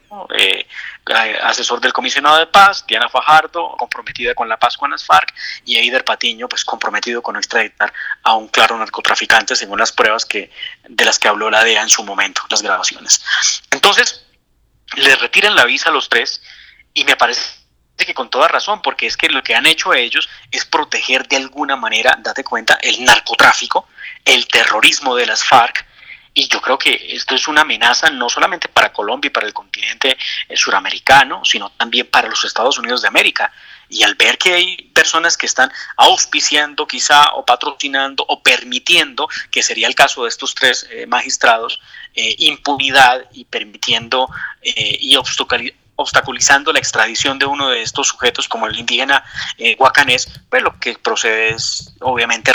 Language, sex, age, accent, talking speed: Spanish, male, 30-49, Colombian, 175 wpm